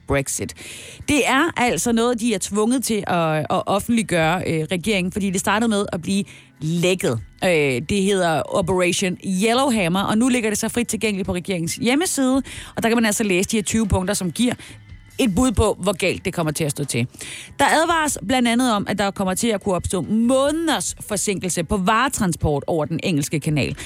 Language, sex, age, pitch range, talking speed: Danish, female, 30-49, 175-240 Hz, 200 wpm